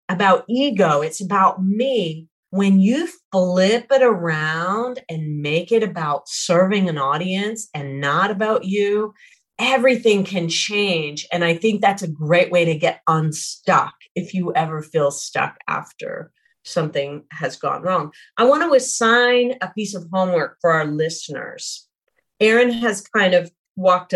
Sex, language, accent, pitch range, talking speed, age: female, English, American, 165-230 Hz, 150 wpm, 40-59